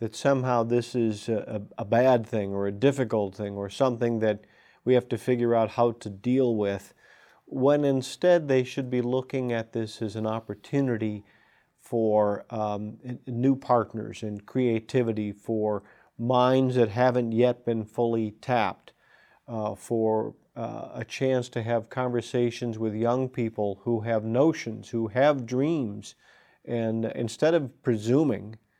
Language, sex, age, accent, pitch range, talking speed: English, male, 50-69, American, 110-130 Hz, 145 wpm